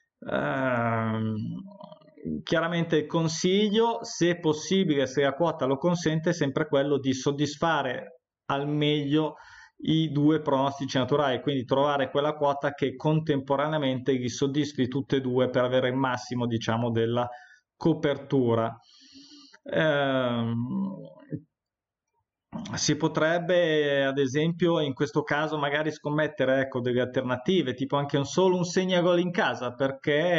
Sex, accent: male, native